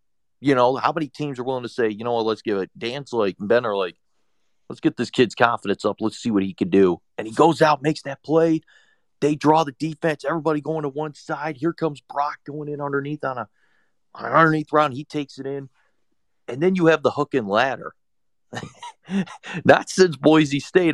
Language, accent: English, American